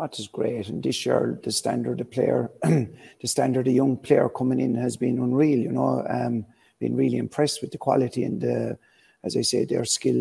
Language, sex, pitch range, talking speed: English, male, 120-135 Hz, 210 wpm